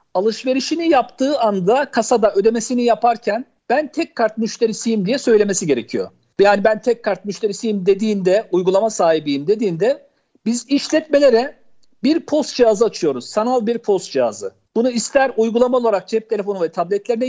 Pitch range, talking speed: 205-265 Hz, 140 wpm